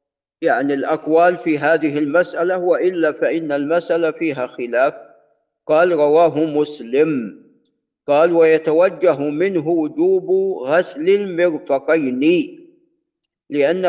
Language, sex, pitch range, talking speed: Arabic, male, 155-185 Hz, 85 wpm